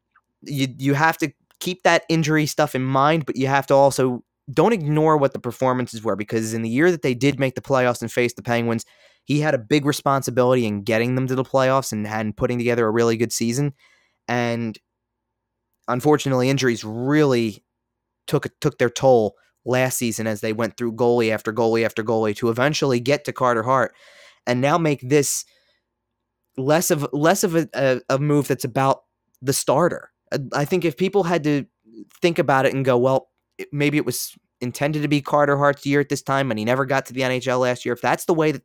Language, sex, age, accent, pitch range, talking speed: English, male, 20-39, American, 115-140 Hz, 205 wpm